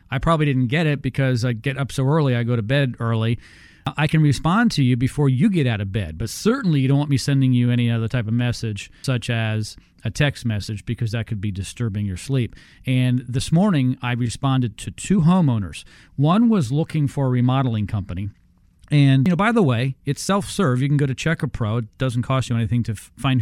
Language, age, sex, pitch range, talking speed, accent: English, 40-59, male, 110-135 Hz, 225 wpm, American